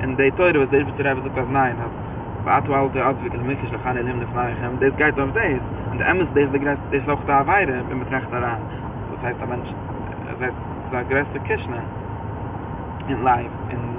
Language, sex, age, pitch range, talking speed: English, male, 20-39, 110-135 Hz, 90 wpm